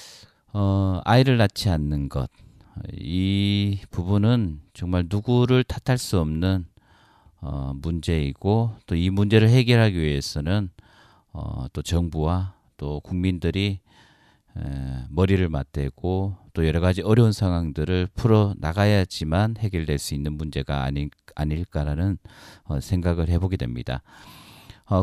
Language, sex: Korean, male